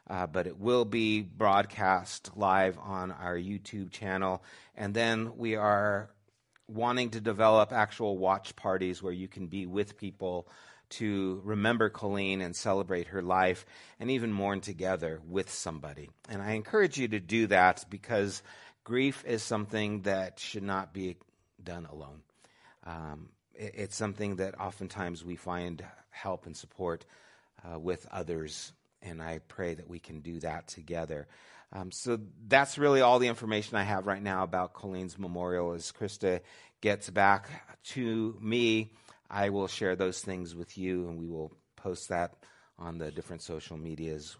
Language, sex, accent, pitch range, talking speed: English, male, American, 90-110 Hz, 155 wpm